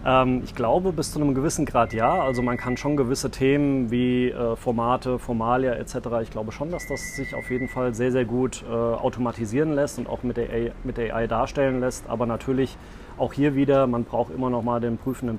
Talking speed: 205 wpm